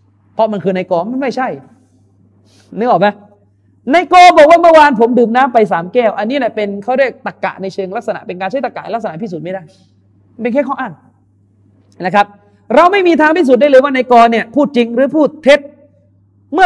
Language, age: Thai, 30-49